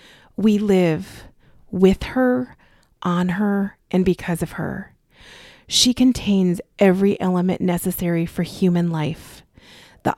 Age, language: 30-49, English